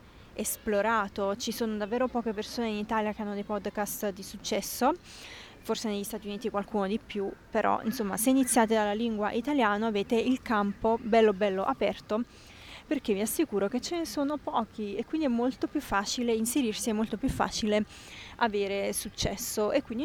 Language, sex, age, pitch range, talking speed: Italian, female, 20-39, 210-235 Hz, 170 wpm